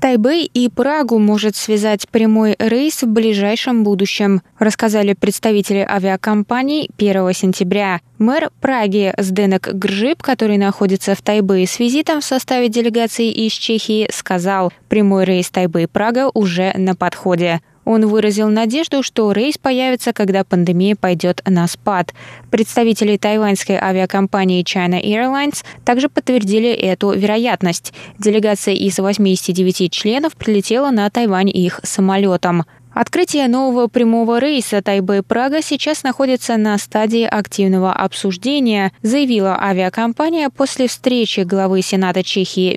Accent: native